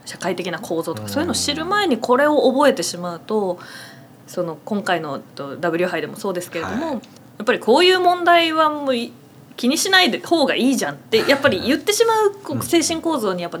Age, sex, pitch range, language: 20-39, female, 175-265 Hz, Japanese